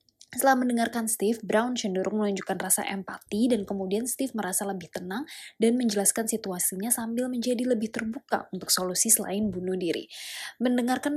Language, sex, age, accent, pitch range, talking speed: Indonesian, female, 20-39, native, 190-245 Hz, 145 wpm